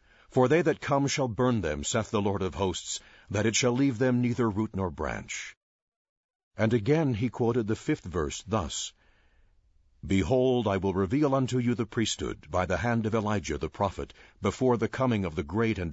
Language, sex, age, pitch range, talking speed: English, male, 60-79, 95-125 Hz, 190 wpm